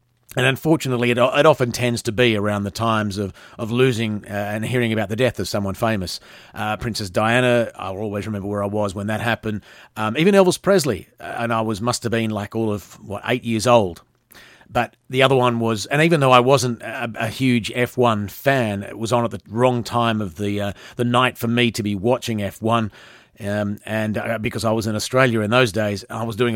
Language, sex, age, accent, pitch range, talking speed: English, male, 40-59, Australian, 105-125 Hz, 225 wpm